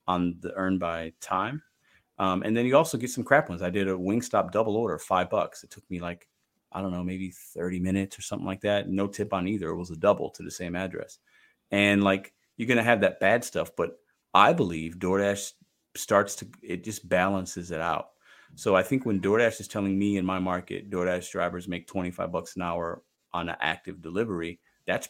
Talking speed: 220 wpm